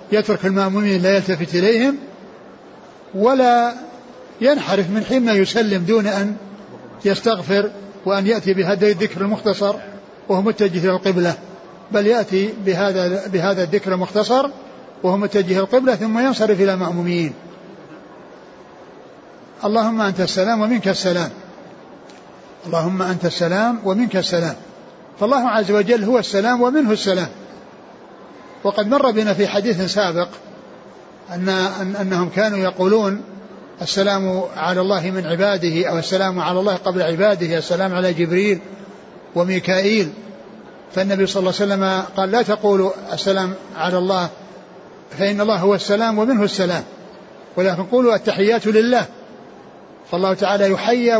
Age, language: 60-79, Arabic